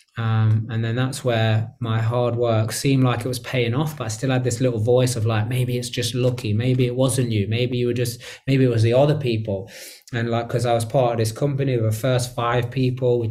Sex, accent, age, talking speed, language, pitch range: male, British, 20-39, 250 wpm, English, 115-130 Hz